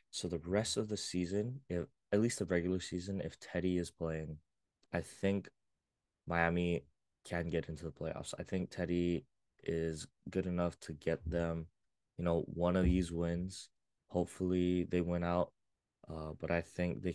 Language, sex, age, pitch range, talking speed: English, male, 20-39, 80-90 Hz, 170 wpm